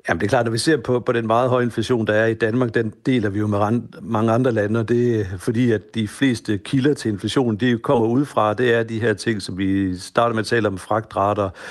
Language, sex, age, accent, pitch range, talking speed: Danish, male, 60-79, native, 100-120 Hz, 275 wpm